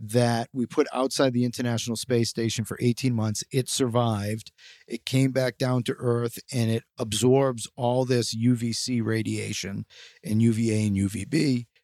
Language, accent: English, American